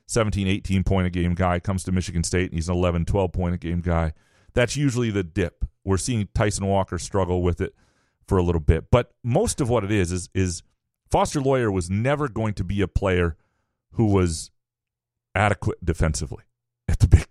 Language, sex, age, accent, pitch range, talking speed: English, male, 40-59, American, 95-125 Hz, 180 wpm